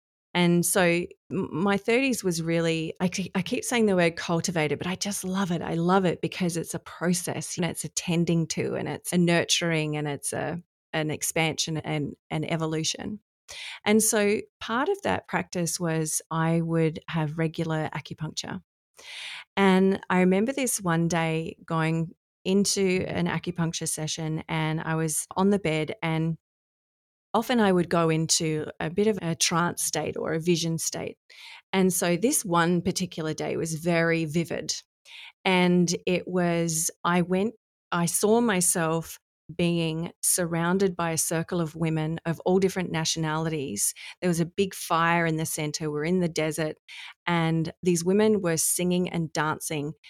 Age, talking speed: 30-49, 160 wpm